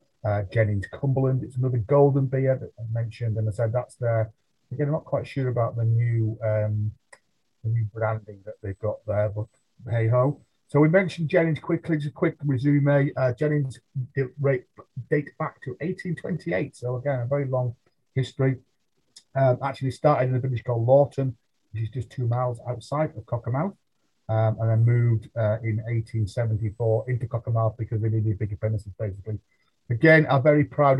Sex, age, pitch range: male, 30-49, 115-140 Hz